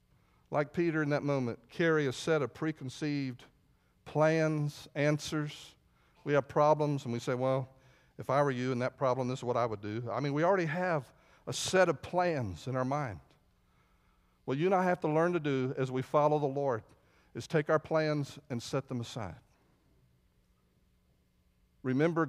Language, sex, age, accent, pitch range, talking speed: English, male, 50-69, American, 115-155 Hz, 180 wpm